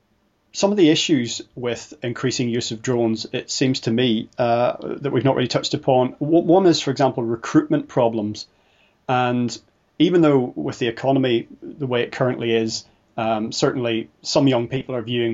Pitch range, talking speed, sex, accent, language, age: 115-135 Hz, 170 wpm, male, British, English, 30-49